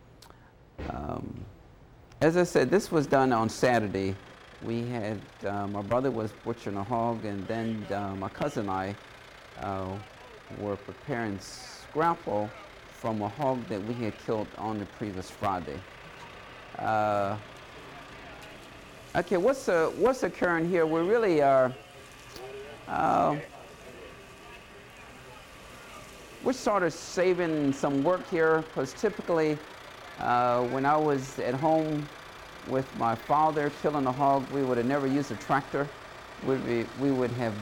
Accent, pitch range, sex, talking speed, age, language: American, 115-145 Hz, male, 135 wpm, 50-69, English